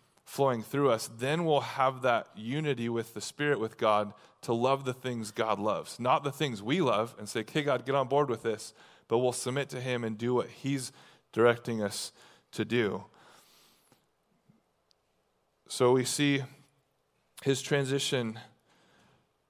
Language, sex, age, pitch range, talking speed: English, male, 20-39, 115-140 Hz, 155 wpm